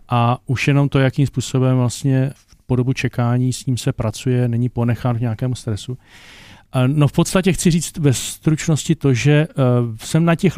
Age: 40-59